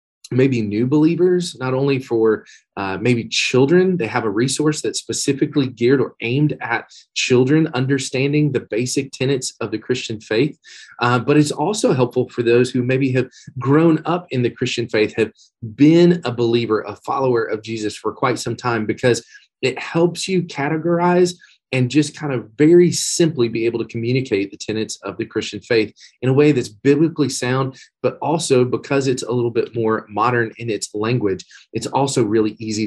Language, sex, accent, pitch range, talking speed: English, male, American, 115-150 Hz, 180 wpm